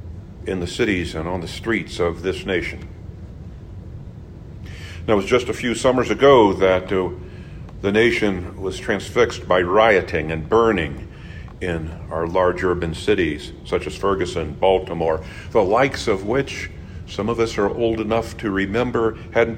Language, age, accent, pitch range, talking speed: English, 50-69, American, 90-120 Hz, 155 wpm